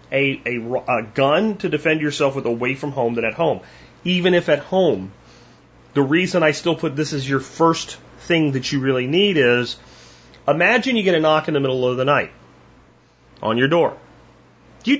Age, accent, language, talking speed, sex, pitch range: 30-49, American, English, 190 wpm, male, 135-195 Hz